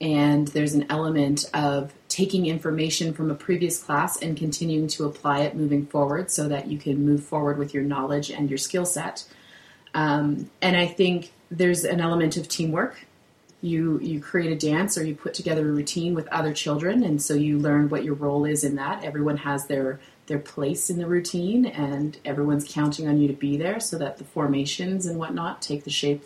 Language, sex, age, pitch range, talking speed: English, female, 30-49, 145-165 Hz, 205 wpm